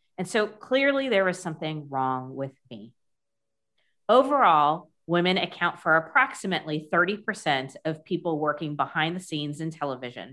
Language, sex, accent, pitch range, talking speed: English, female, American, 140-185 Hz, 135 wpm